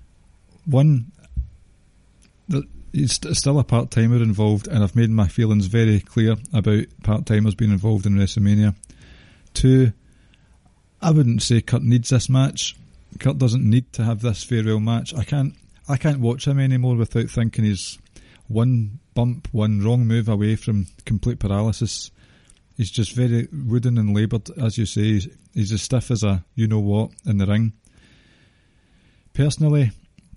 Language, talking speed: English, 145 wpm